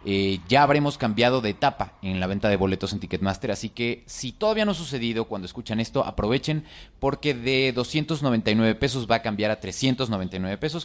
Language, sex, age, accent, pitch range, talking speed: Spanish, male, 30-49, Mexican, 105-140 Hz, 190 wpm